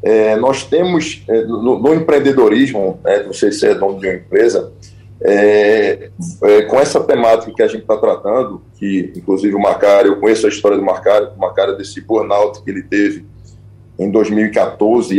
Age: 20-39